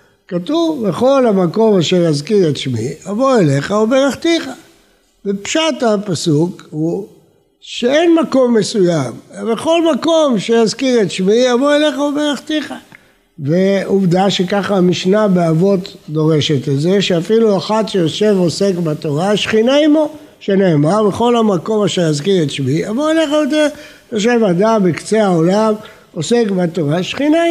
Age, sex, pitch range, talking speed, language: 60-79, male, 185-255 Hz, 115 wpm, Hebrew